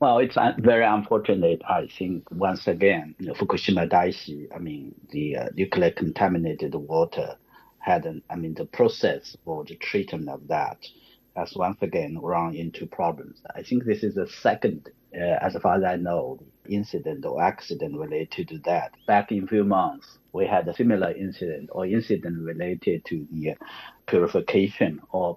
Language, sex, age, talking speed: English, male, 60-79, 170 wpm